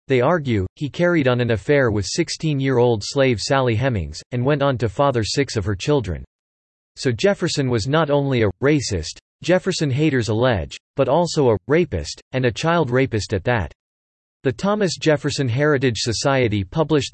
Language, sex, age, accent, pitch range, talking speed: English, male, 40-59, American, 110-145 Hz, 165 wpm